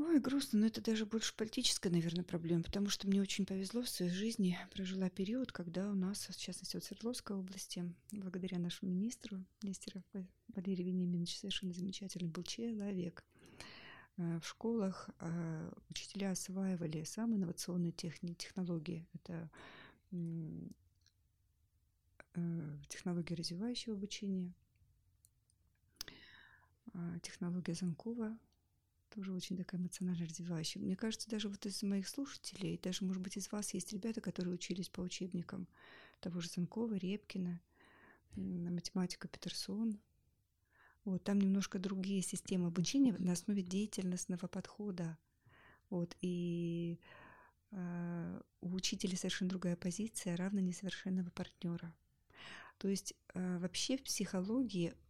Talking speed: 115 wpm